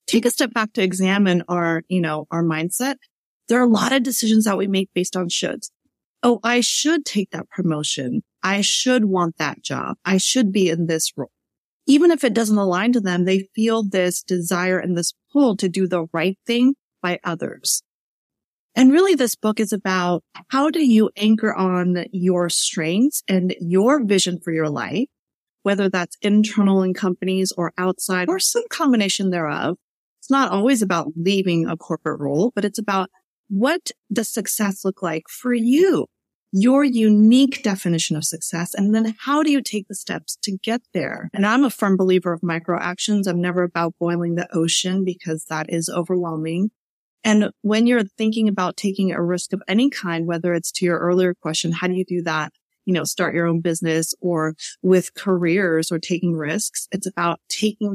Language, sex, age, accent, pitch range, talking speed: English, female, 30-49, American, 175-220 Hz, 185 wpm